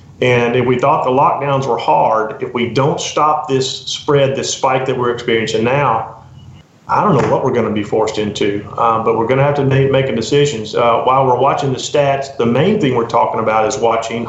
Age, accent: 40-59, American